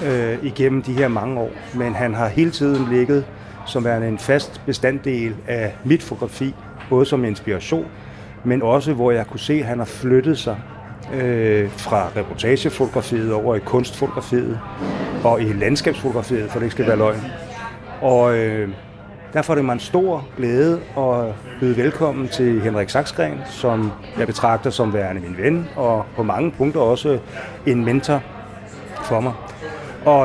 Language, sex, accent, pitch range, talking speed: Danish, male, native, 110-135 Hz, 160 wpm